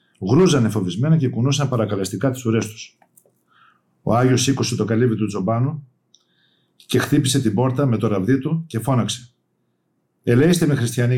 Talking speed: 150 wpm